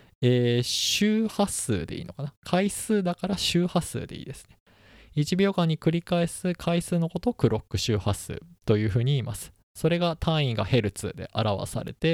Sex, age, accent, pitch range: male, 20-39, native, 105-150 Hz